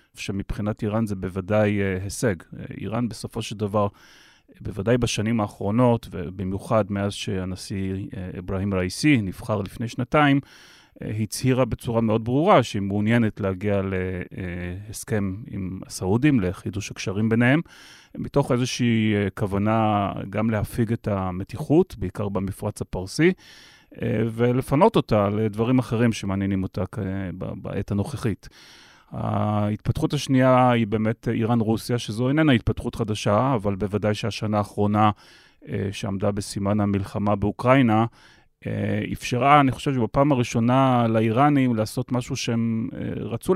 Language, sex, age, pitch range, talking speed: Hebrew, male, 30-49, 100-125 Hz, 105 wpm